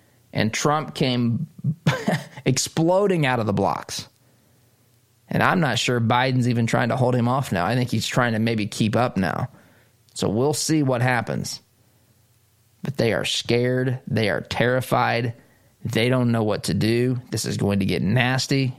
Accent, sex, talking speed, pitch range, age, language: American, male, 170 wpm, 115-130 Hz, 20-39, English